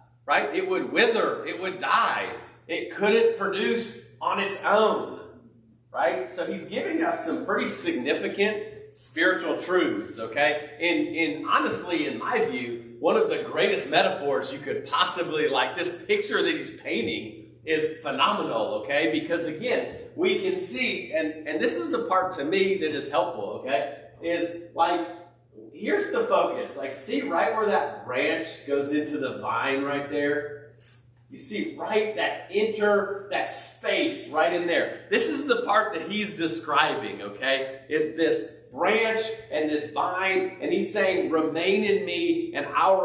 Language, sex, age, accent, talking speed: English, male, 40-59, American, 160 wpm